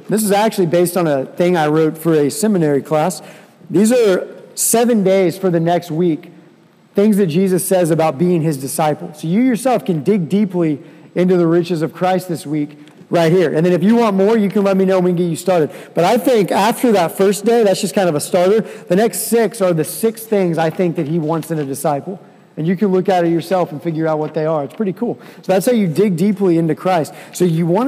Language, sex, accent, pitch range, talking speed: English, male, American, 155-195 Hz, 245 wpm